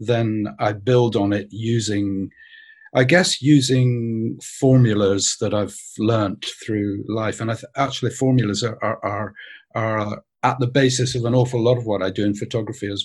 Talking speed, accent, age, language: 175 wpm, British, 50-69, English